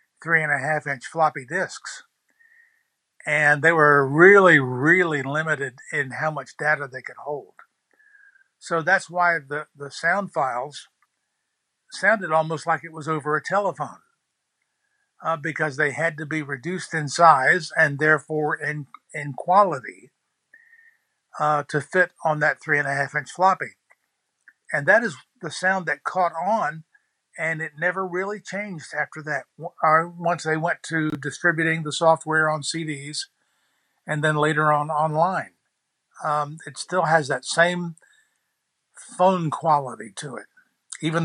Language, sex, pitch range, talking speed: English, male, 150-185 Hz, 135 wpm